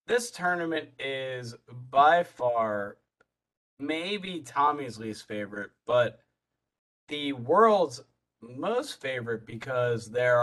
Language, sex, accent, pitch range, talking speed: English, male, American, 115-150 Hz, 90 wpm